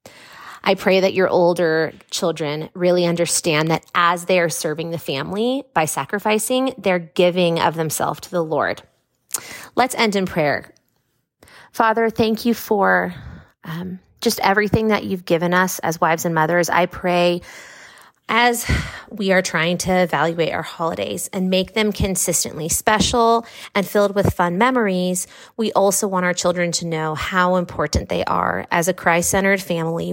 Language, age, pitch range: English, 30-49, 170-195 Hz